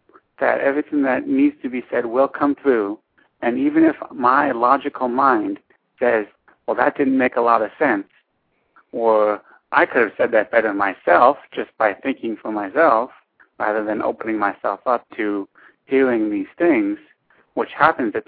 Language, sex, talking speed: English, male, 165 wpm